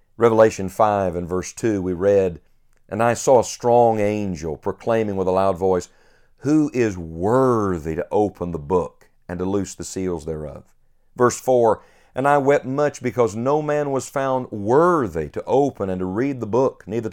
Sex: male